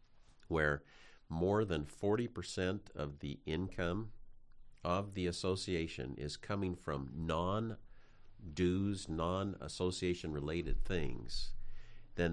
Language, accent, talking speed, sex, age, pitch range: English, American, 85 wpm, male, 50-69, 75-105 Hz